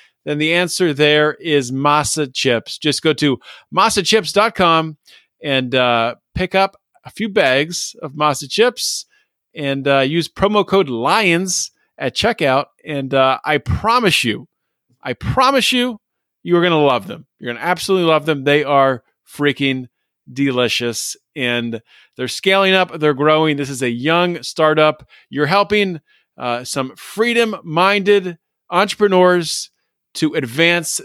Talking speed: 135 wpm